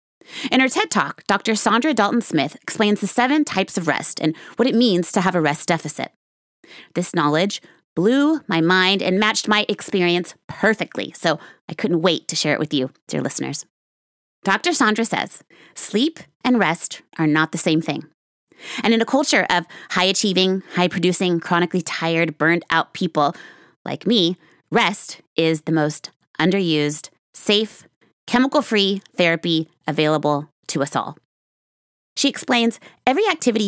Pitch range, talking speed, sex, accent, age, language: 160-220 Hz, 155 wpm, female, American, 30-49, English